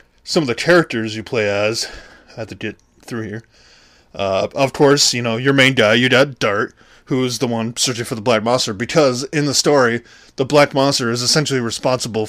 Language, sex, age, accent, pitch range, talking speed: English, male, 20-39, American, 110-145 Hz, 205 wpm